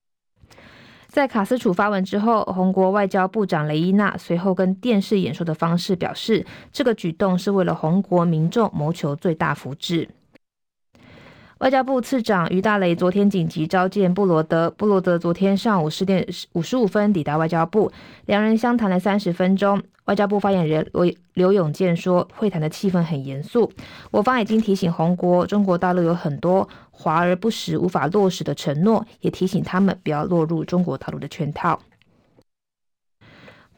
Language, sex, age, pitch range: Chinese, female, 20-39, 170-205 Hz